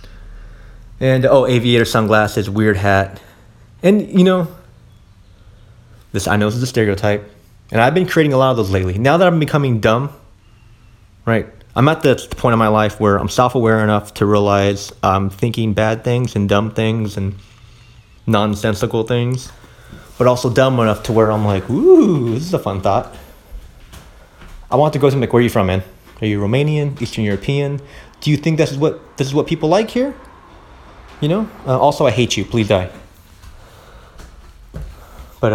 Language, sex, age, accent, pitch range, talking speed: English, male, 30-49, American, 95-125 Hz, 180 wpm